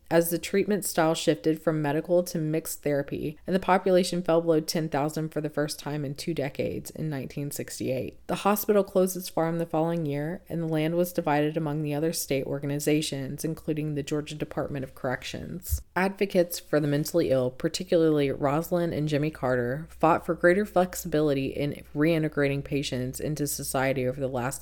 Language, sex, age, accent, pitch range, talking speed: English, female, 20-39, American, 140-165 Hz, 175 wpm